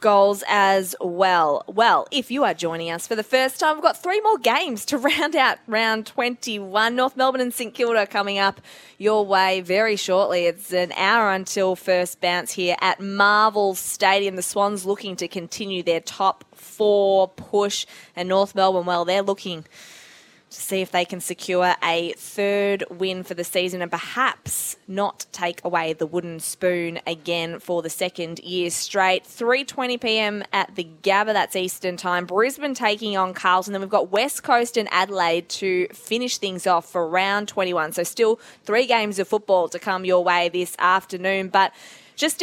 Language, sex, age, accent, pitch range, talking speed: English, female, 20-39, Australian, 180-215 Hz, 175 wpm